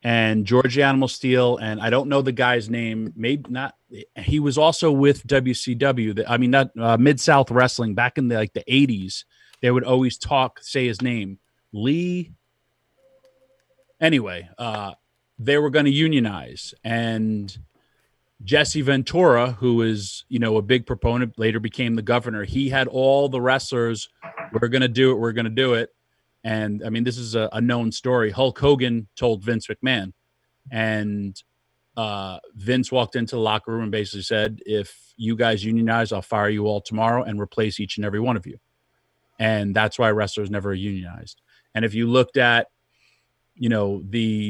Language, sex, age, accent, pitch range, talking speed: English, male, 30-49, American, 110-130 Hz, 180 wpm